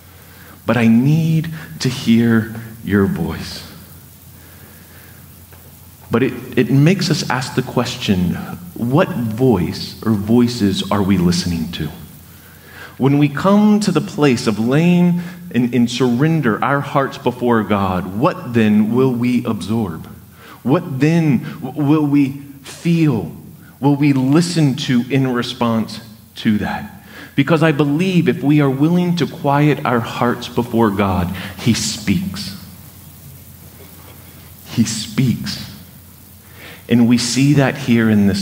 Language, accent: English, American